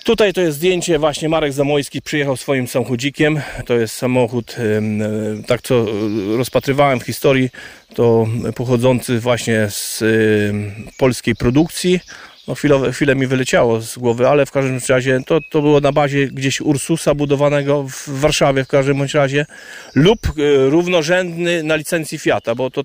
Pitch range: 125-155 Hz